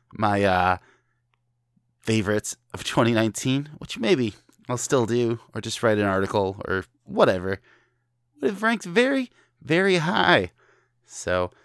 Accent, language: American, English